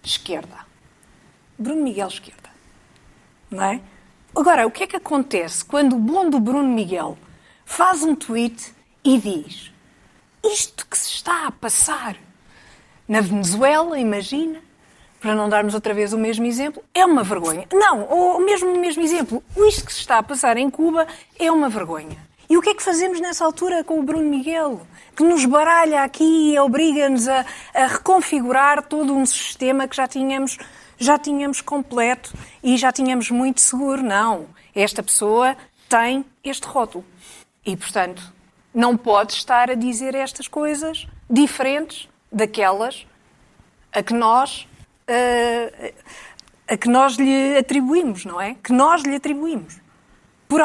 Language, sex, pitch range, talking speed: Portuguese, female, 230-305 Hz, 145 wpm